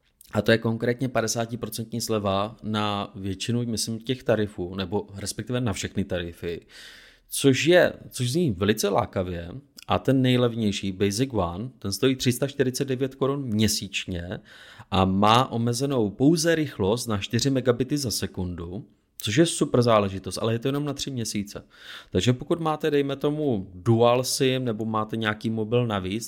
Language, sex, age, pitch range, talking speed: Czech, male, 30-49, 95-115 Hz, 145 wpm